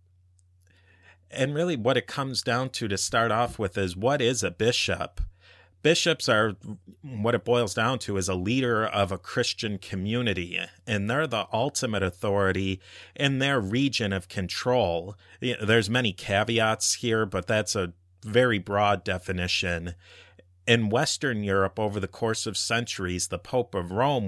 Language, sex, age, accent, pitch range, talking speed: English, male, 40-59, American, 95-120 Hz, 155 wpm